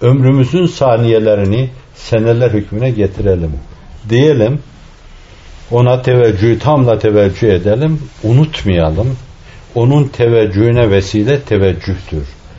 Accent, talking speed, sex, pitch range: native, 75 wpm, male, 100-140 Hz